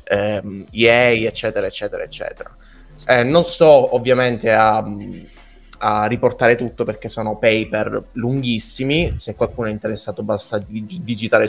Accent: native